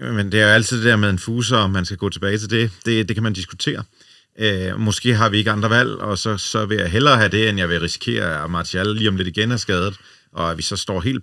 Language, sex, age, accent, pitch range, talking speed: Danish, male, 40-59, native, 95-115 Hz, 295 wpm